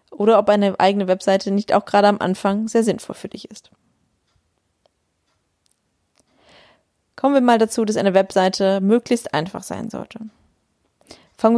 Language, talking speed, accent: German, 140 wpm, German